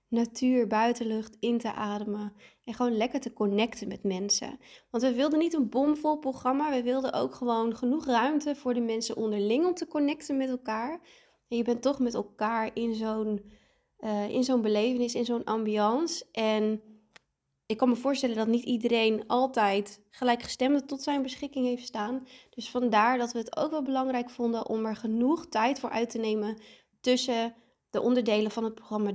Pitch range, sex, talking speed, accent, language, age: 220-255 Hz, female, 175 wpm, Dutch, Dutch, 20-39